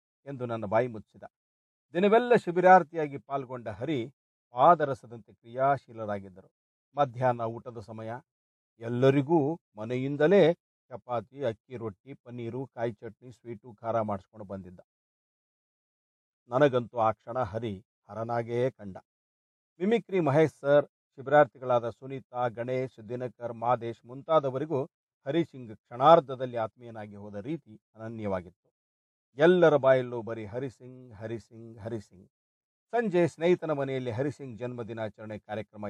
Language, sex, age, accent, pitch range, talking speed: Kannada, male, 50-69, native, 110-145 Hz, 100 wpm